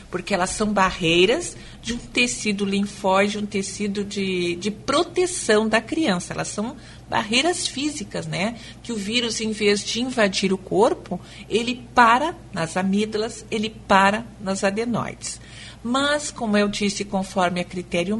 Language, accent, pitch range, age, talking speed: Portuguese, Brazilian, 190-230 Hz, 50-69, 150 wpm